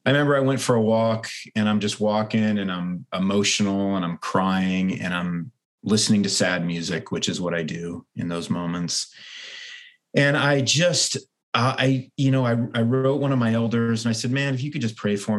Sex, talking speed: male, 210 wpm